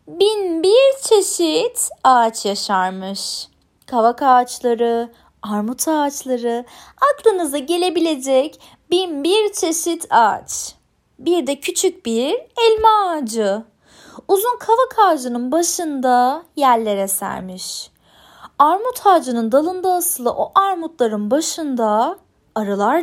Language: Turkish